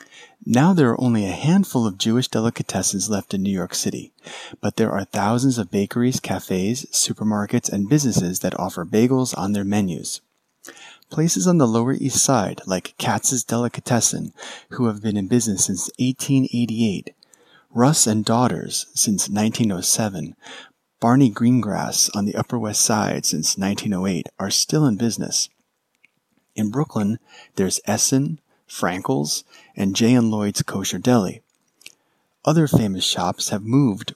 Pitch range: 100-125 Hz